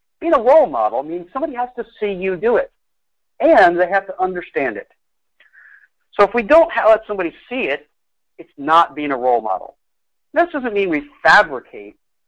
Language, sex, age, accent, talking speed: English, male, 50-69, American, 180 wpm